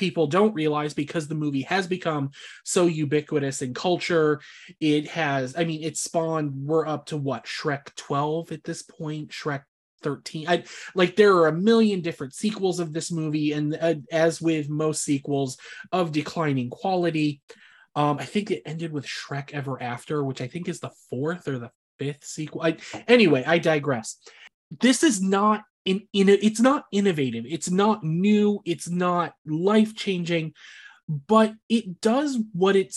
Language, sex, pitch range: English, male, 145-190 Hz